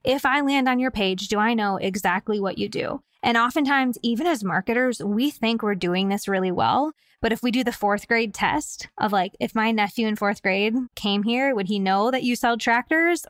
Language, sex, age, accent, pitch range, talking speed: English, female, 20-39, American, 205-265 Hz, 225 wpm